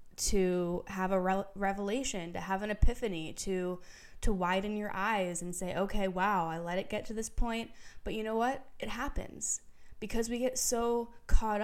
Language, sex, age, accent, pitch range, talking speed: English, female, 20-39, American, 180-220 Hz, 185 wpm